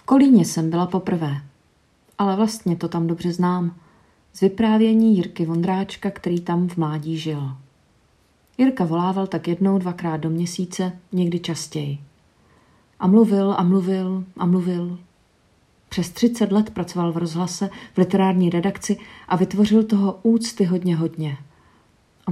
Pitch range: 165-190 Hz